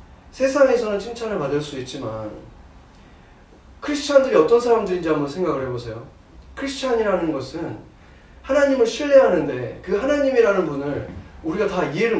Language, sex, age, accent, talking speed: English, male, 30-49, Korean, 105 wpm